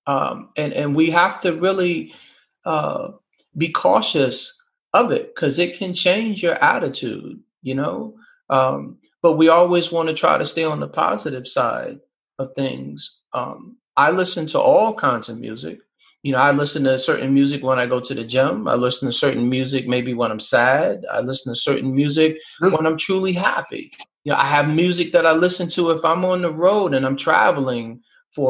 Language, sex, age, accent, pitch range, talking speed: English, male, 30-49, American, 135-180 Hz, 195 wpm